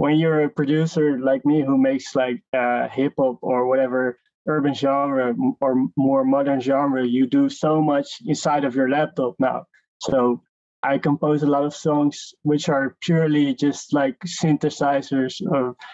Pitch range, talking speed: 130-150 Hz, 160 wpm